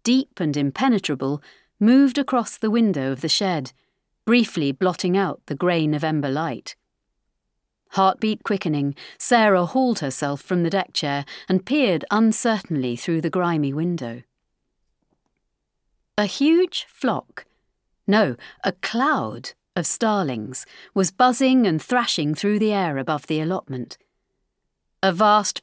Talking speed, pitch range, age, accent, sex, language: 125 wpm, 150-215 Hz, 40-59, British, female, English